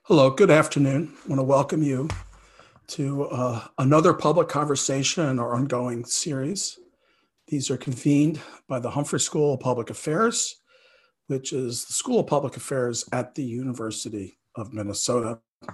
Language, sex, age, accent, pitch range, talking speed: English, male, 50-69, American, 120-150 Hz, 150 wpm